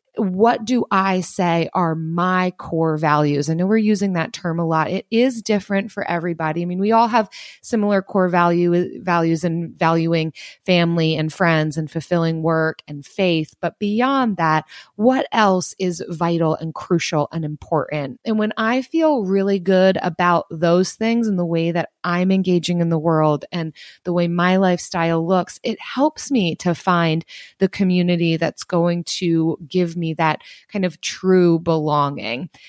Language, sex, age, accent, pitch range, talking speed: English, female, 30-49, American, 165-205 Hz, 165 wpm